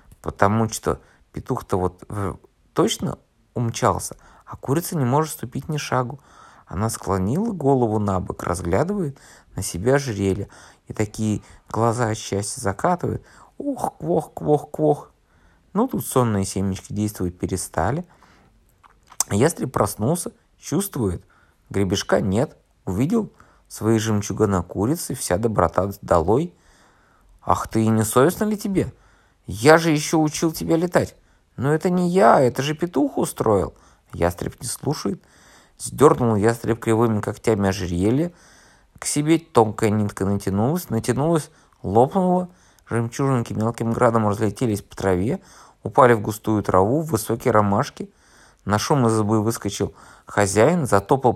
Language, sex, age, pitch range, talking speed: Russian, male, 20-39, 100-140 Hz, 125 wpm